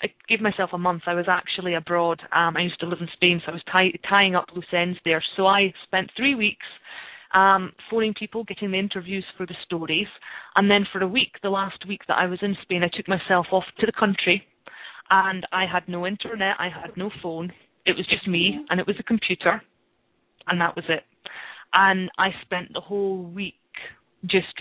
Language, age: English, 30-49